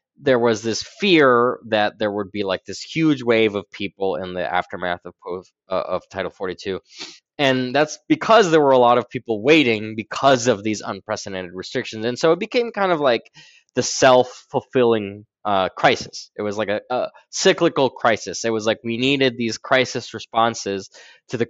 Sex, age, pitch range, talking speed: male, 20-39, 105-130 Hz, 185 wpm